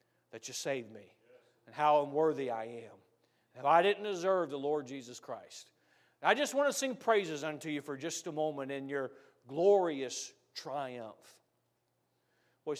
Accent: American